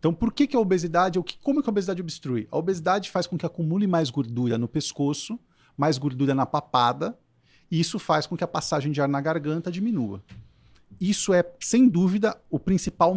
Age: 40-59